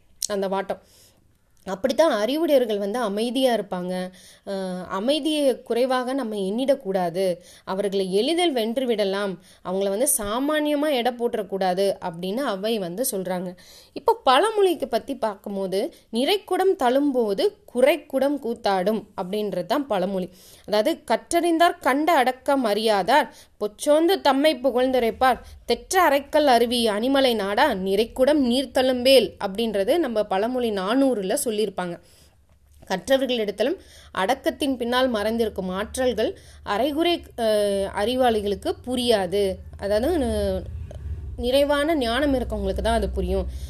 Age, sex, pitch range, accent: 20-39, female, 200-270 Hz, native